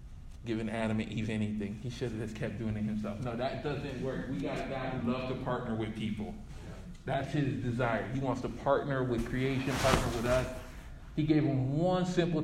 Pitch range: 110-135 Hz